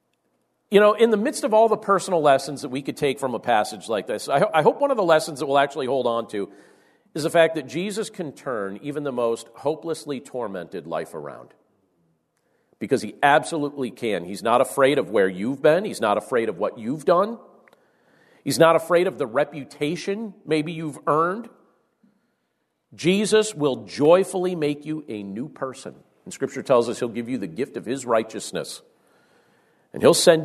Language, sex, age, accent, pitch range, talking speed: English, male, 50-69, American, 125-175 Hz, 190 wpm